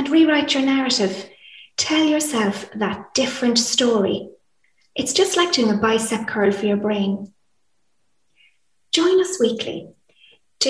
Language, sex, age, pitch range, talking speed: English, female, 30-49, 205-280 Hz, 130 wpm